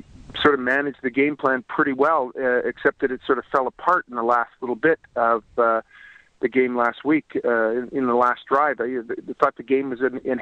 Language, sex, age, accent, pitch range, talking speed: English, male, 30-49, American, 125-150 Hz, 235 wpm